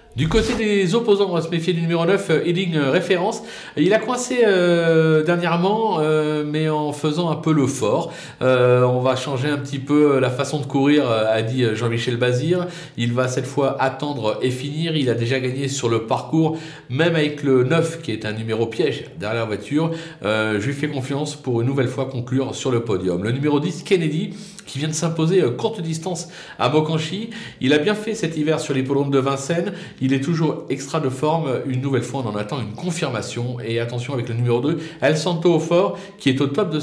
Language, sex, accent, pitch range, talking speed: French, male, French, 130-170 Hz, 215 wpm